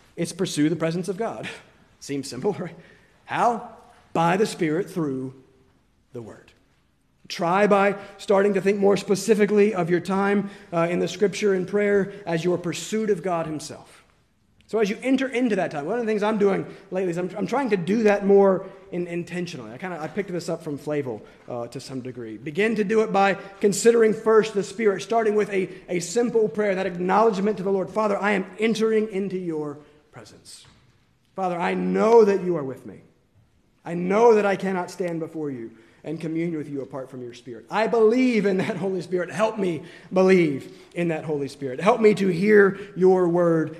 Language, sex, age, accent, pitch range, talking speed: English, male, 30-49, American, 150-205 Hz, 195 wpm